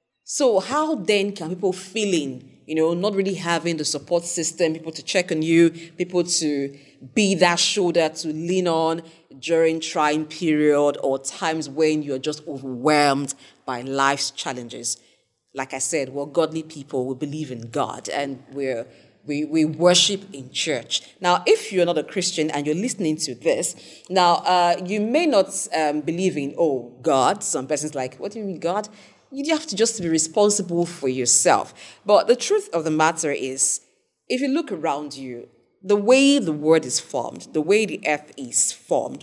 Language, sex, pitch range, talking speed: English, female, 140-190 Hz, 175 wpm